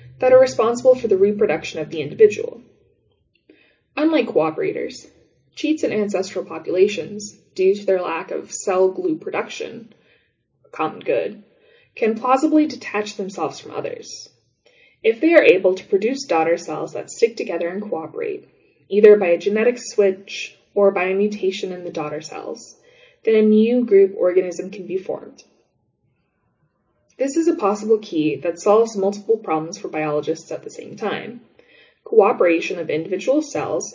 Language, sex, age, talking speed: English, female, 20-39, 150 wpm